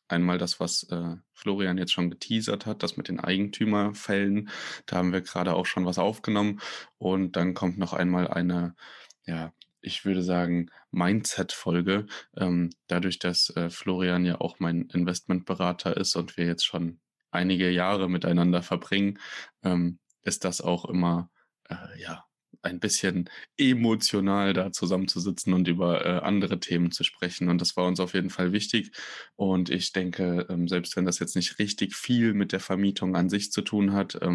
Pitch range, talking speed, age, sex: 90-95 Hz, 165 wpm, 20-39, male